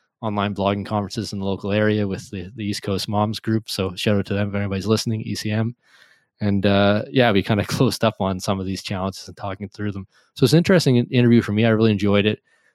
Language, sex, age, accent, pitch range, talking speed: English, male, 20-39, American, 95-110 Hz, 240 wpm